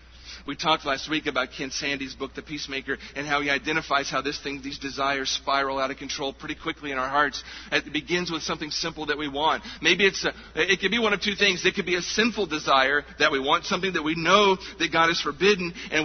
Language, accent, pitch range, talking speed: English, American, 155-195 Hz, 240 wpm